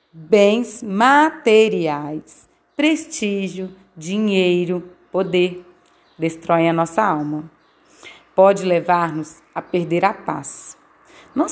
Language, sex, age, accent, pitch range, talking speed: Portuguese, female, 30-49, Brazilian, 175-250 Hz, 85 wpm